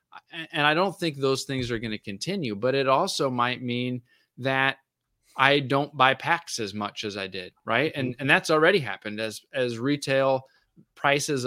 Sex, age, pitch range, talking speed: male, 20-39, 120-145 Hz, 185 wpm